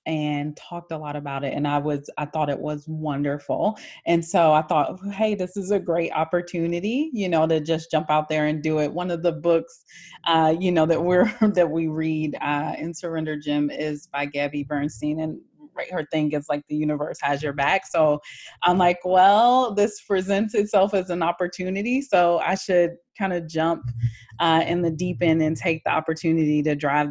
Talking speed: 205 wpm